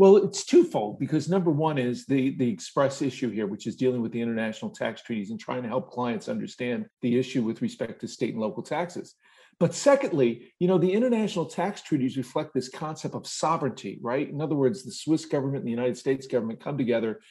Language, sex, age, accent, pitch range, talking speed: English, male, 50-69, American, 125-165 Hz, 215 wpm